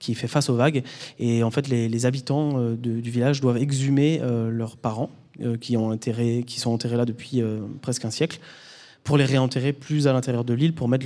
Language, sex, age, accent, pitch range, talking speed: French, male, 20-39, French, 120-140 Hz, 230 wpm